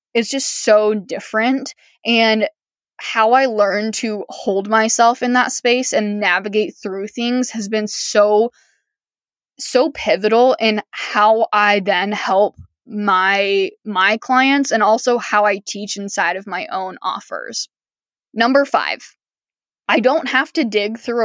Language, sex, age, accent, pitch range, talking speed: English, female, 10-29, American, 210-250 Hz, 140 wpm